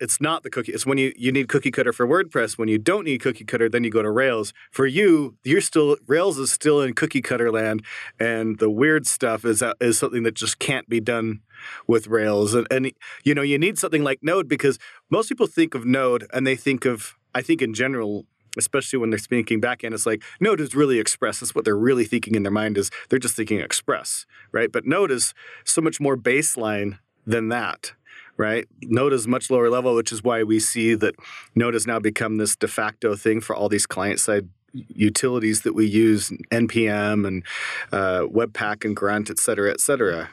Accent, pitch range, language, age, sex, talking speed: American, 105-130 Hz, English, 40-59, male, 215 wpm